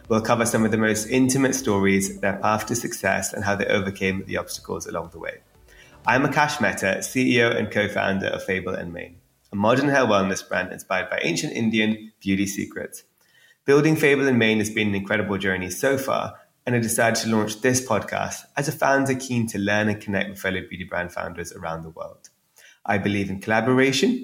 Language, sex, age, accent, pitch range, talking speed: English, male, 20-39, British, 95-120 Hz, 200 wpm